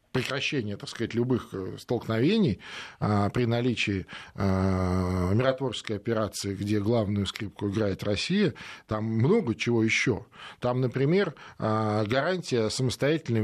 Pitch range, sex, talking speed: 105-145 Hz, male, 110 wpm